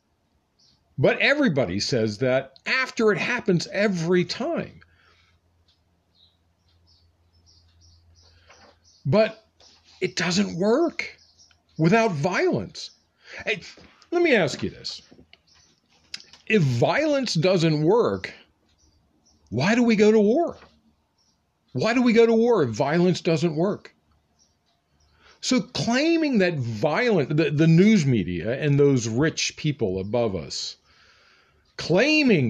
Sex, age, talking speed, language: male, 50-69, 105 wpm, English